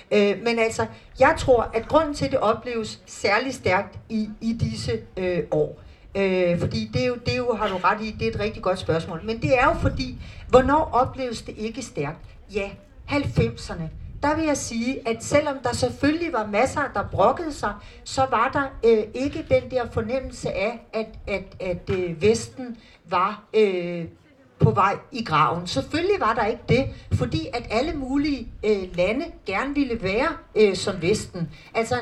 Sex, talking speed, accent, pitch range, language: female, 185 wpm, native, 190-265 Hz, Danish